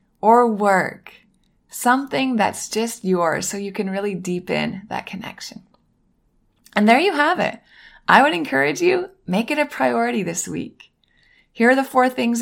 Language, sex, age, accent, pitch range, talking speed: English, female, 20-39, American, 190-240 Hz, 160 wpm